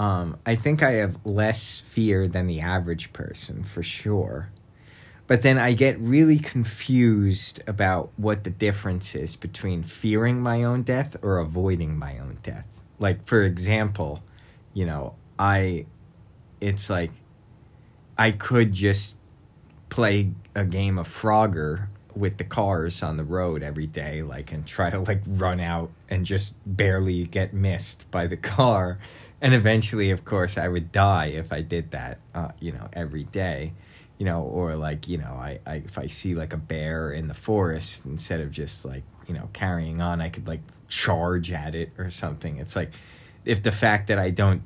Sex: male